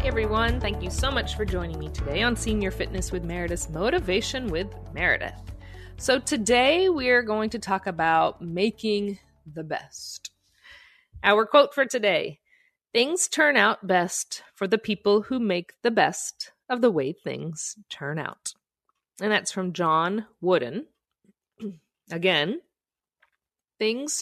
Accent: American